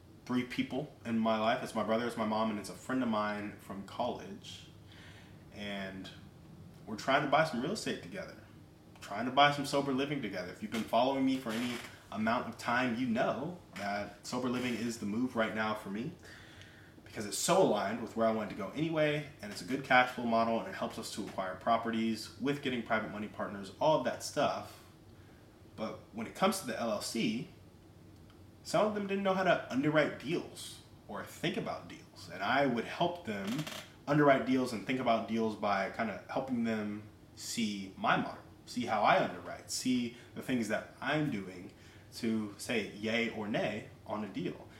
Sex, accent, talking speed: male, American, 200 wpm